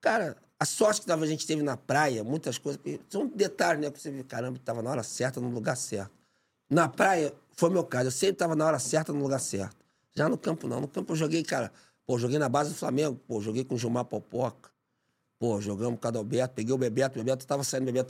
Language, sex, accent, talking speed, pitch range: Portuguese, male, Brazilian, 250 wpm, 120-150 Hz